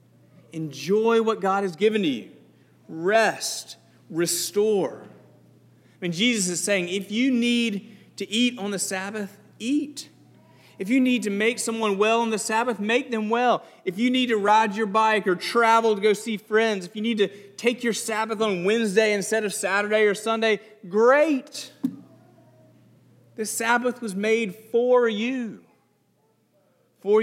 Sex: male